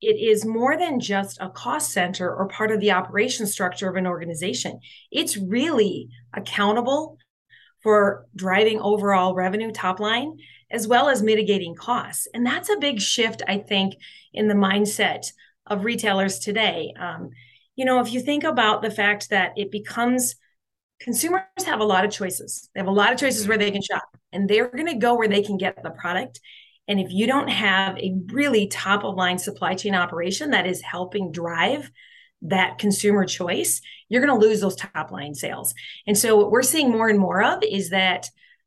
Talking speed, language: 185 wpm, English